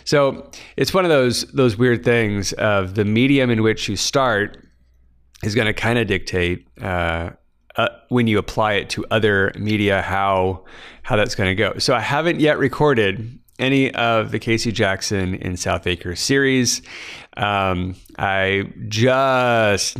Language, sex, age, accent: English, male, 30-49, American